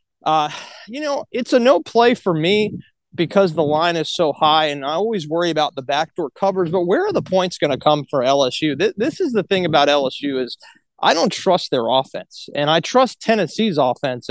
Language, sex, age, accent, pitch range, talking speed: English, male, 30-49, American, 145-205 Hz, 210 wpm